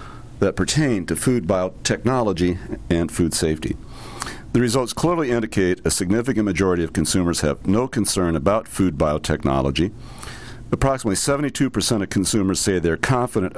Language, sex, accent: English, male, American